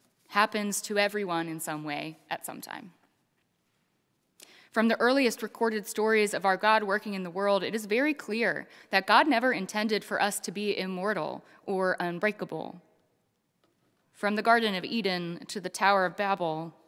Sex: female